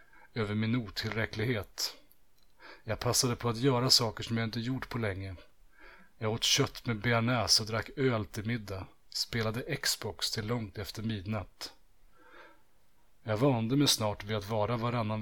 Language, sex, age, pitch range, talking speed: Swedish, male, 30-49, 105-120 Hz, 155 wpm